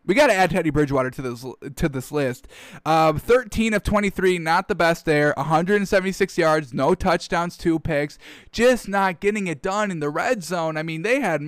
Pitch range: 150-190 Hz